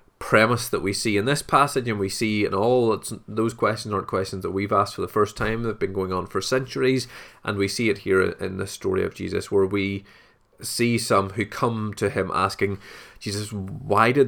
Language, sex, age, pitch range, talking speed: English, male, 20-39, 100-115 Hz, 215 wpm